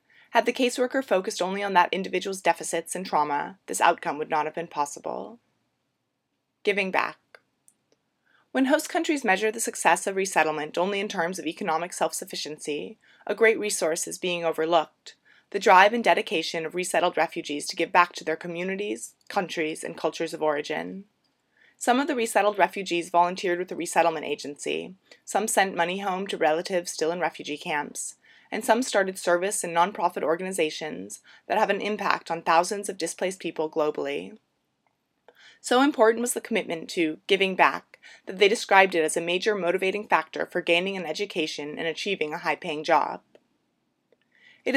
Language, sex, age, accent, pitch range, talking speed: English, female, 20-39, American, 165-205 Hz, 165 wpm